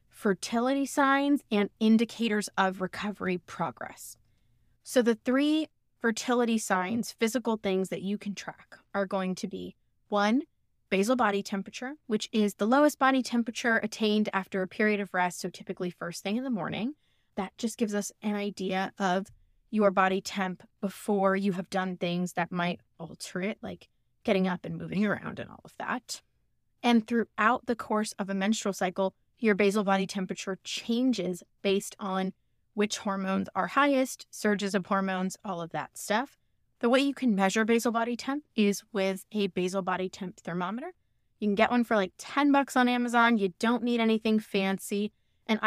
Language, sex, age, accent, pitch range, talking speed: English, female, 20-39, American, 195-235 Hz, 170 wpm